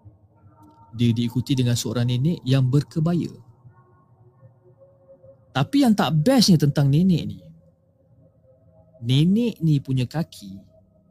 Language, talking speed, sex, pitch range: Malay, 95 wpm, male, 110-150 Hz